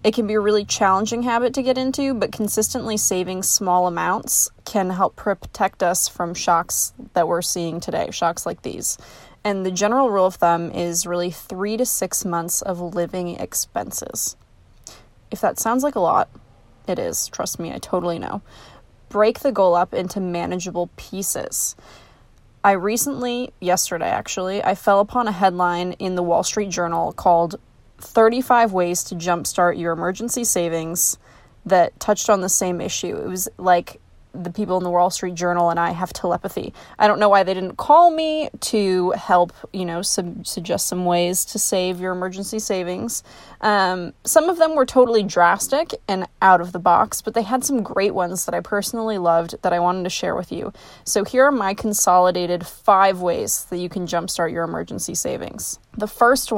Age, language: 20-39, English